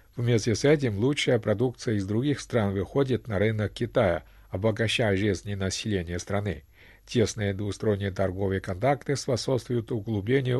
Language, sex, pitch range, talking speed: Russian, male, 95-120 Hz, 130 wpm